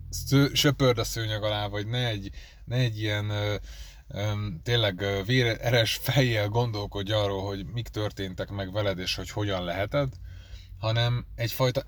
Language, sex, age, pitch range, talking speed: Hungarian, male, 20-39, 90-125 Hz, 145 wpm